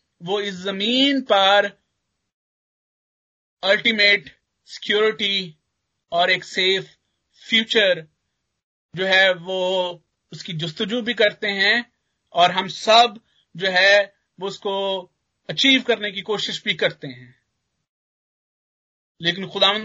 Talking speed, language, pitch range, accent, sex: 105 wpm, Hindi, 165-210 Hz, native, male